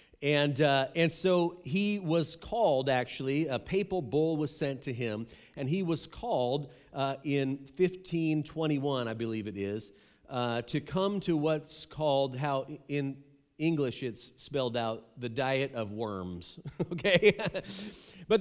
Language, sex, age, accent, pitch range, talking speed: English, male, 40-59, American, 110-155 Hz, 145 wpm